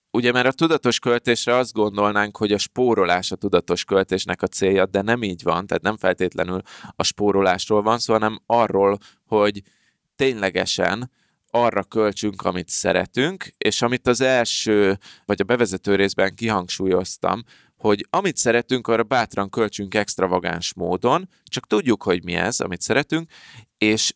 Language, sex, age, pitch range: Hungarian, male, 20-39, 95-120 Hz